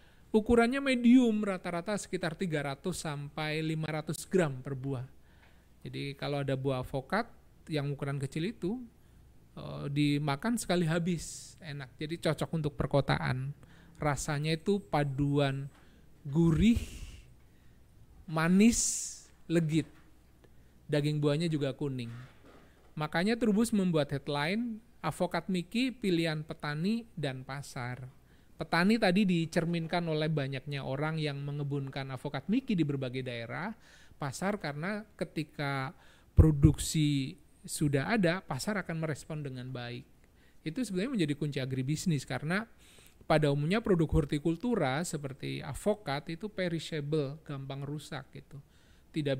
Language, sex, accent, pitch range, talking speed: Indonesian, male, native, 140-175 Hz, 110 wpm